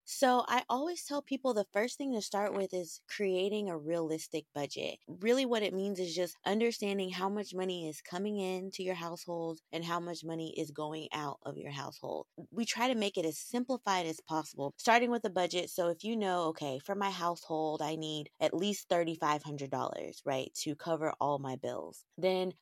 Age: 20-39